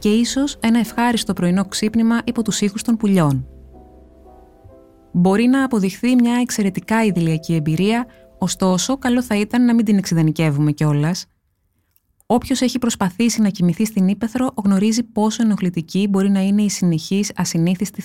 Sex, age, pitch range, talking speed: female, 20-39, 165-220 Hz, 145 wpm